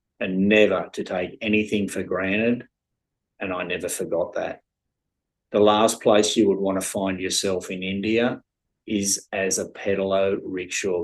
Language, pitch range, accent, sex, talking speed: English, 95-115 Hz, Australian, male, 150 wpm